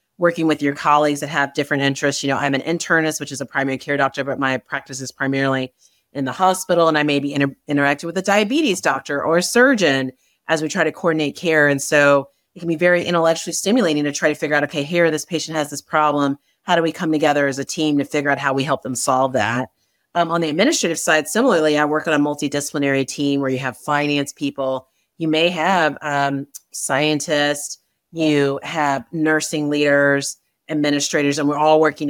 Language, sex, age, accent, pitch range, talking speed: English, female, 30-49, American, 140-165 Hz, 210 wpm